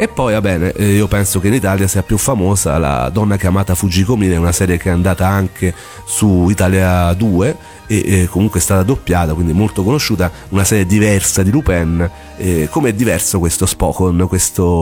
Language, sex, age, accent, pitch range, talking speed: Italian, male, 40-59, native, 90-110 Hz, 180 wpm